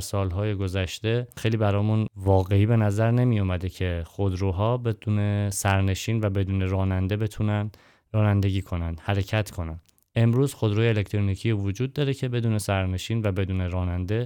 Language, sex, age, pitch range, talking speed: Persian, male, 20-39, 100-115 Hz, 130 wpm